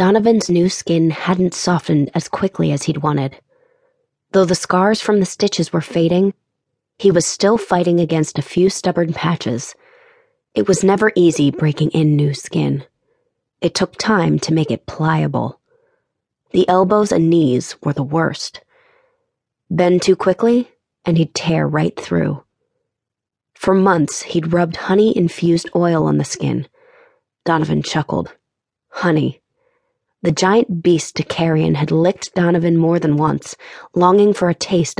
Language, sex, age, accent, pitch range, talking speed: English, female, 20-39, American, 160-210 Hz, 145 wpm